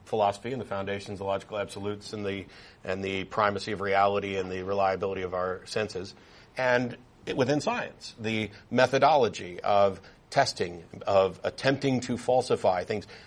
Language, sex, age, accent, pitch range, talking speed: English, male, 50-69, American, 100-135 Hz, 150 wpm